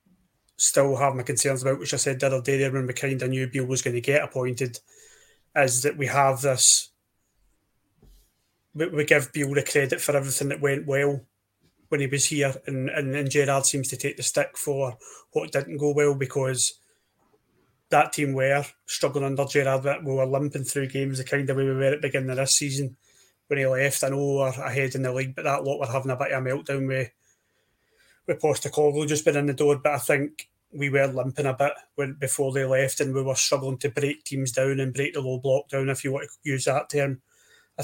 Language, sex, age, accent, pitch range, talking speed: English, male, 20-39, British, 130-145 Hz, 230 wpm